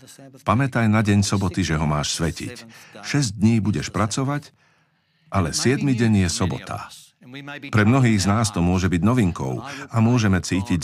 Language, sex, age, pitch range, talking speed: Slovak, male, 50-69, 90-115 Hz, 155 wpm